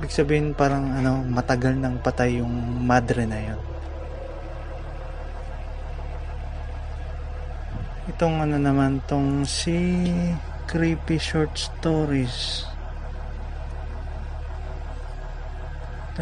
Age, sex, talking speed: 20-39, male, 75 wpm